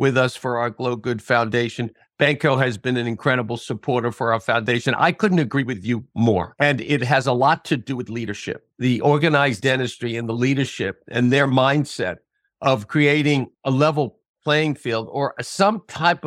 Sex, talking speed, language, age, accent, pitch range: male, 180 wpm, English, 50-69, American, 125-150 Hz